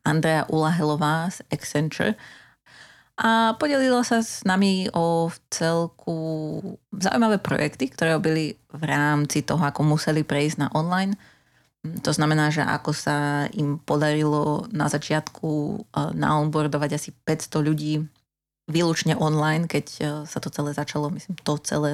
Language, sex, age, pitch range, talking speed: Slovak, female, 30-49, 150-175 Hz, 125 wpm